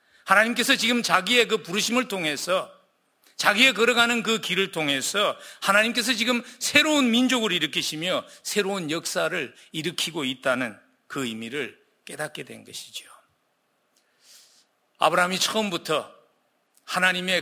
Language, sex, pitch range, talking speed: English, male, 140-205 Hz, 95 wpm